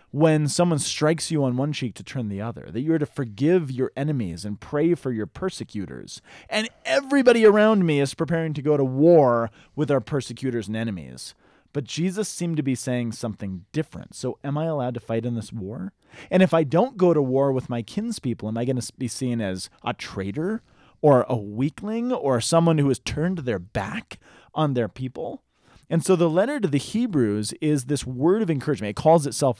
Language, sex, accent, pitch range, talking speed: English, male, American, 115-160 Hz, 205 wpm